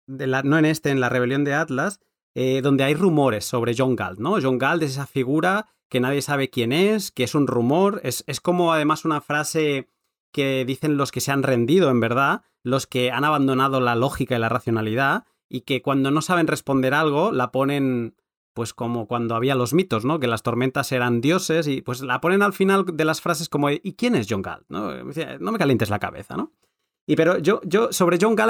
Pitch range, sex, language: 125-160 Hz, male, Spanish